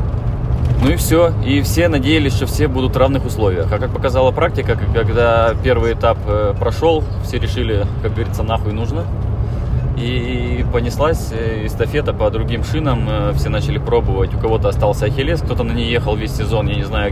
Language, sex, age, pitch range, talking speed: Russian, male, 20-39, 100-115 Hz, 170 wpm